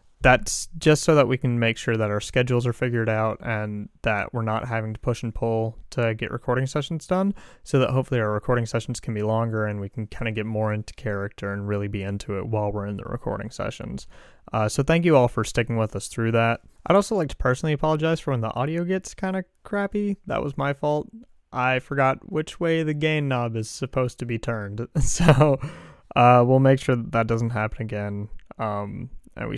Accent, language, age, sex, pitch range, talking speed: American, English, 20-39, male, 110-140 Hz, 225 wpm